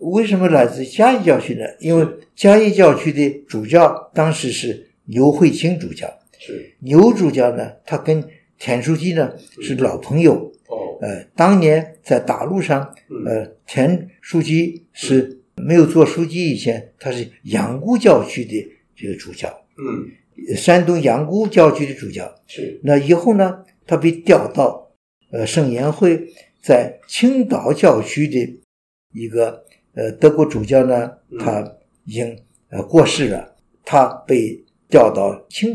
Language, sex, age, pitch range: Chinese, male, 60-79, 125-180 Hz